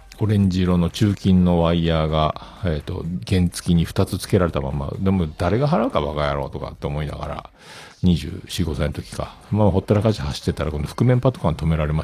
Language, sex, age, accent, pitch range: Japanese, male, 50-69, native, 80-105 Hz